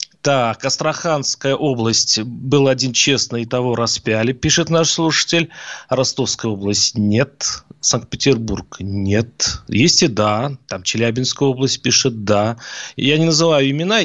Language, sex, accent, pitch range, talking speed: Russian, male, native, 125-155 Hz, 135 wpm